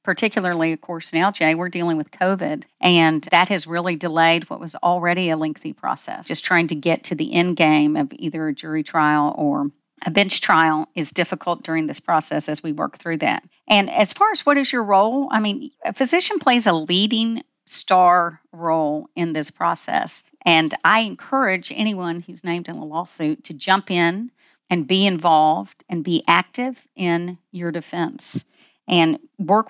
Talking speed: 180 wpm